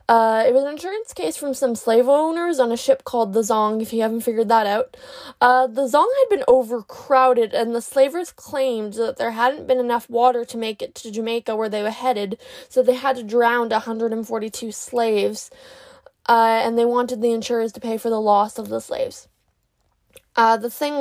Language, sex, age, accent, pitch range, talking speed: English, female, 20-39, American, 225-270 Hz, 205 wpm